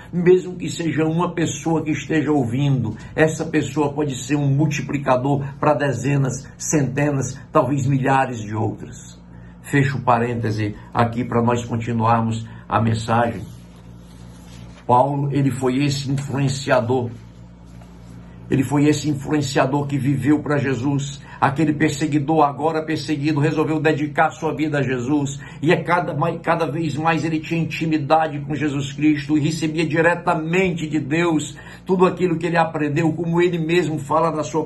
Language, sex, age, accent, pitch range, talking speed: Portuguese, male, 60-79, Brazilian, 130-170 Hz, 135 wpm